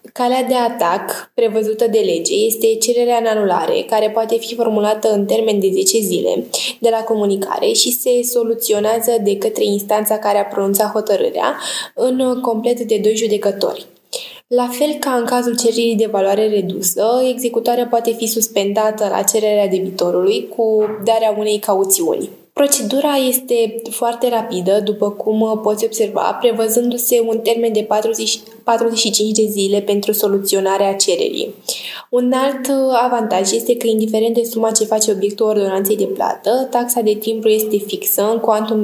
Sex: female